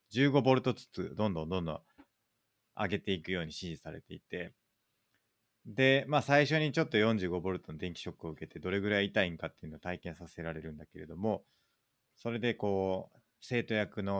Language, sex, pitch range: Japanese, male, 90-125 Hz